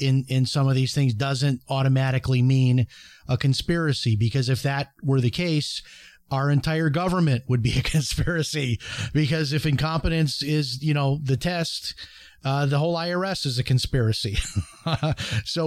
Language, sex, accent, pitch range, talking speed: English, male, American, 130-160 Hz, 155 wpm